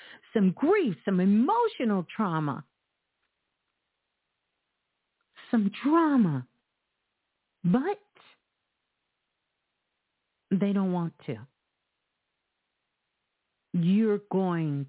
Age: 50-69